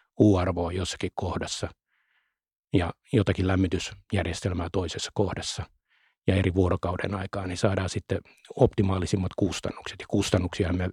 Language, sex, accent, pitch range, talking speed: Finnish, male, native, 90-100 Hz, 110 wpm